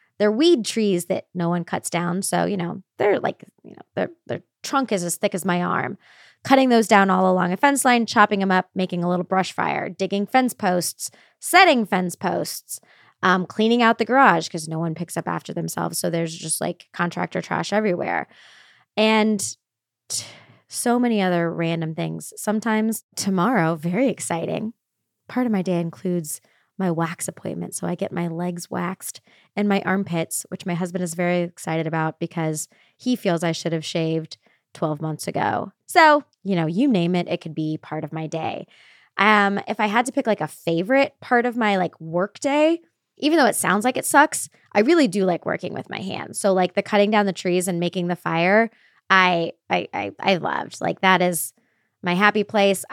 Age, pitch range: 20-39, 170-215 Hz